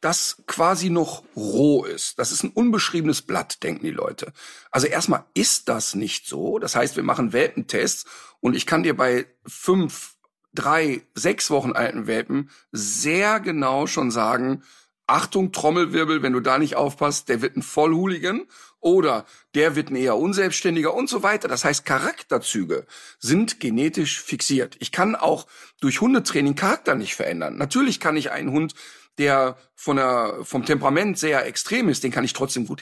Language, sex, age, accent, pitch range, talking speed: German, male, 50-69, German, 140-200 Hz, 165 wpm